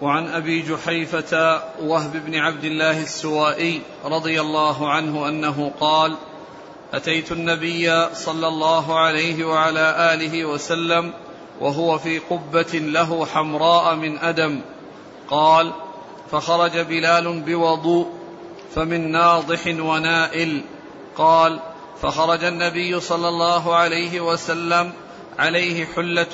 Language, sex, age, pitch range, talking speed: Arabic, male, 40-59, 160-170 Hz, 100 wpm